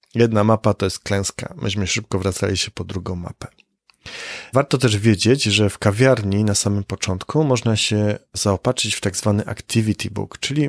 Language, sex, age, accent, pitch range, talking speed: Polish, male, 30-49, native, 100-130 Hz, 170 wpm